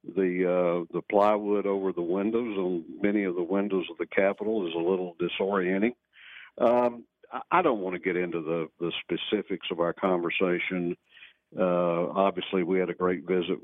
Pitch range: 85-95 Hz